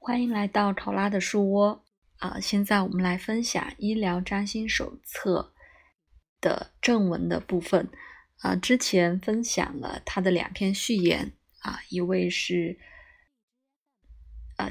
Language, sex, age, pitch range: Chinese, female, 20-39, 180-220 Hz